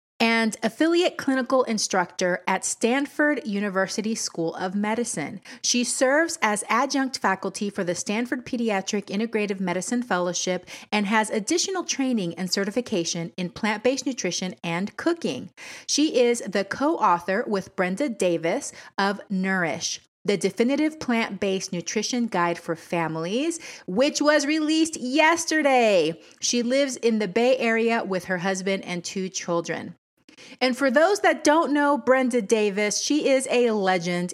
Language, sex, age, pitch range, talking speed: English, female, 30-49, 190-260 Hz, 135 wpm